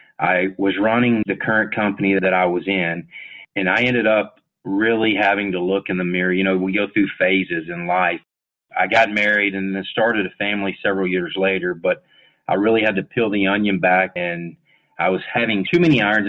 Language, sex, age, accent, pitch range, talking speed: English, male, 30-49, American, 95-115 Hz, 205 wpm